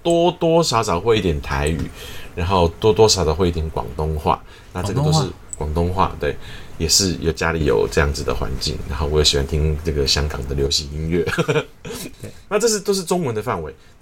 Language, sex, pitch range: Chinese, male, 75-100 Hz